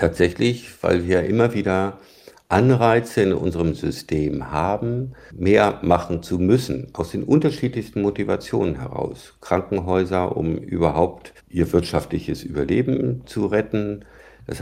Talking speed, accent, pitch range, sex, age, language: 115 wpm, German, 80-105 Hz, male, 50-69, German